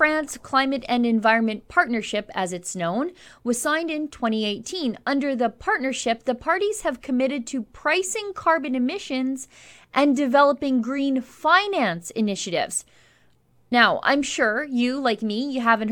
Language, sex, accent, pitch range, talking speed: English, female, American, 225-295 Hz, 135 wpm